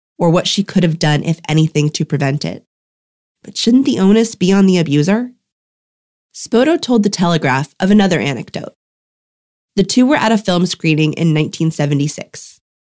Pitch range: 155-210 Hz